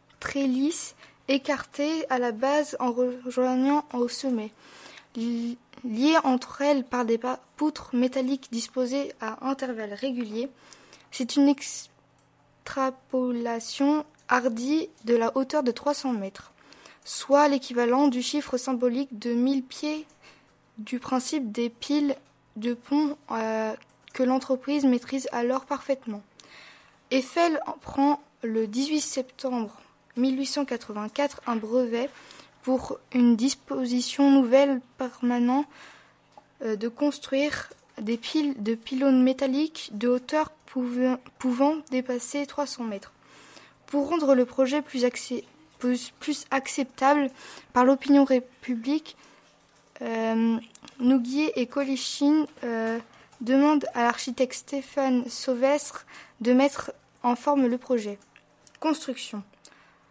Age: 20-39